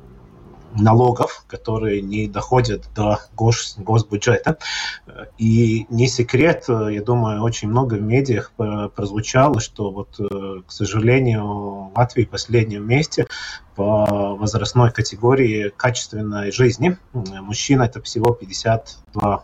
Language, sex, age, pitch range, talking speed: Russian, male, 30-49, 100-120 Hz, 110 wpm